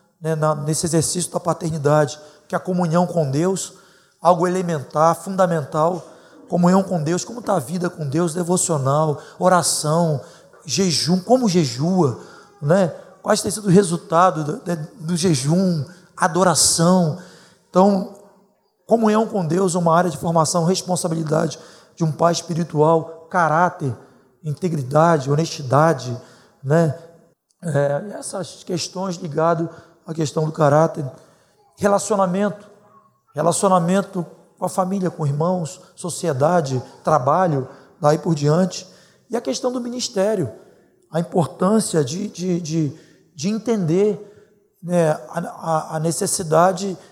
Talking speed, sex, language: 115 wpm, male, Portuguese